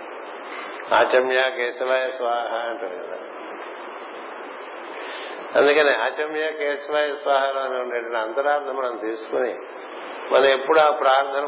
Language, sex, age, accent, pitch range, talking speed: Telugu, male, 50-69, native, 125-145 Hz, 90 wpm